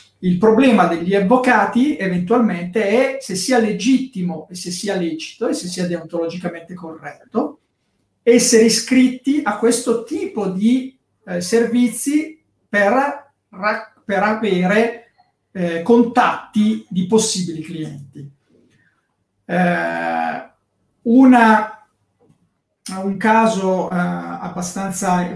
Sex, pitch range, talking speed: male, 175-220 Hz, 95 wpm